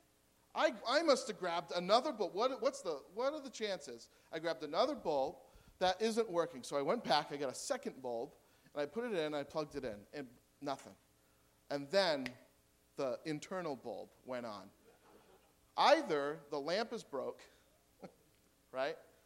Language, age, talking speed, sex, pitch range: English, 40-59, 160 wpm, male, 125-180 Hz